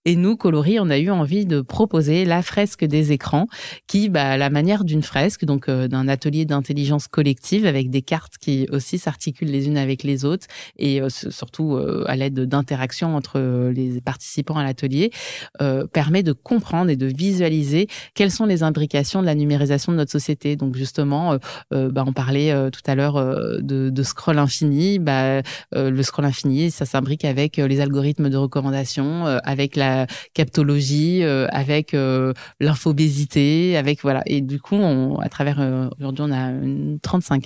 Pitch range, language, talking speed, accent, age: 135-170 Hz, French, 185 wpm, French, 20-39